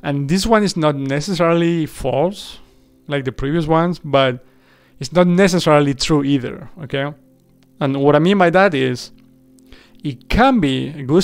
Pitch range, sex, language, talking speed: 130-155 Hz, male, English, 160 wpm